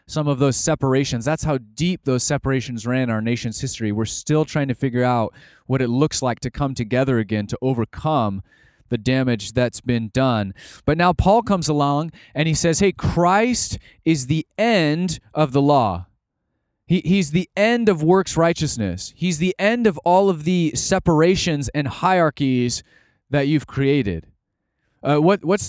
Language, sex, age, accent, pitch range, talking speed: English, male, 30-49, American, 120-170 Hz, 170 wpm